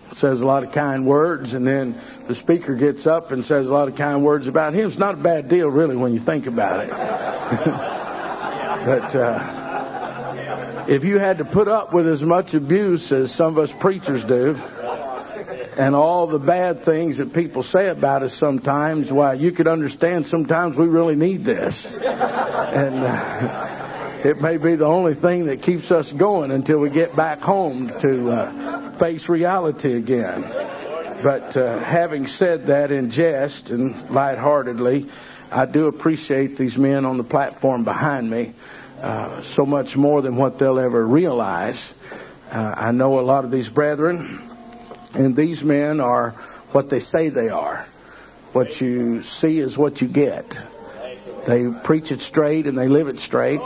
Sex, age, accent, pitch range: male, 50-69, American, 130-165 Hz